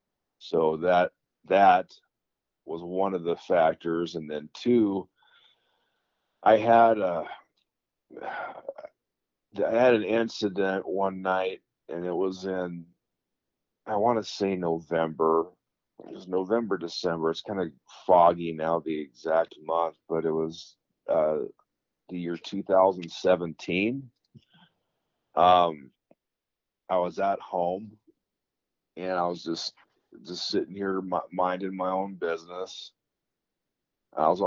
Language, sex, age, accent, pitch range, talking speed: English, male, 50-69, American, 85-95 Hz, 120 wpm